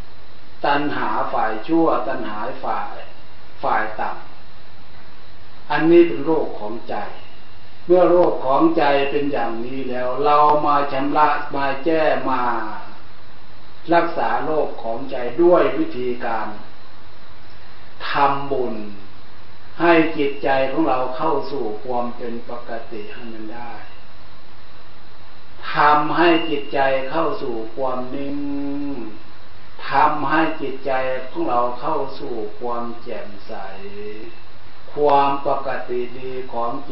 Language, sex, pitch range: Thai, male, 105-140 Hz